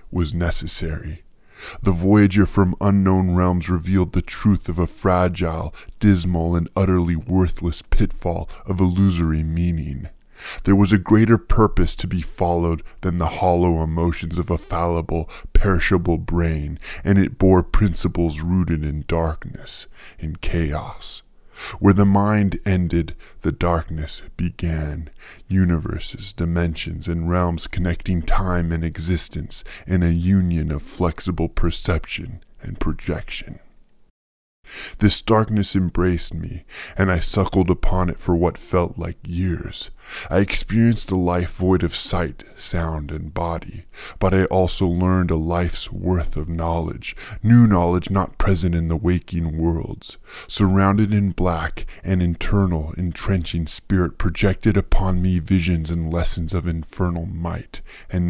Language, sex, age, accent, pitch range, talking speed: English, female, 20-39, American, 80-95 Hz, 130 wpm